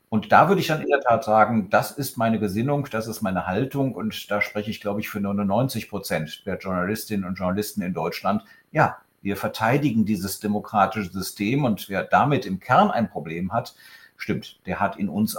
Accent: German